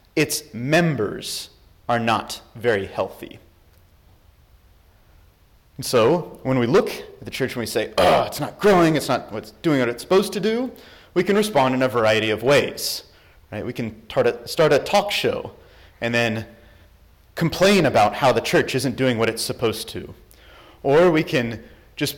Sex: male